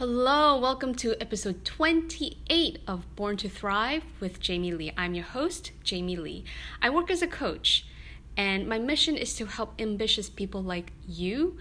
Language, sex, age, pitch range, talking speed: English, female, 20-39, 180-240 Hz, 165 wpm